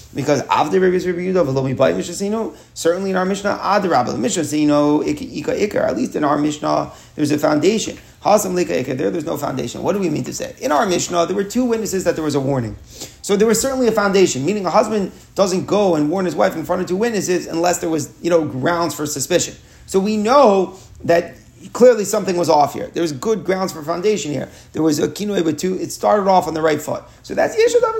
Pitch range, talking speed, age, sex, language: 155-205 Hz, 210 wpm, 30-49, male, English